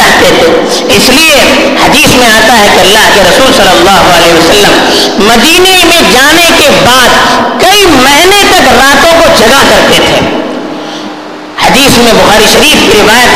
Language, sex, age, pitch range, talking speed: Urdu, female, 50-69, 245-335 Hz, 155 wpm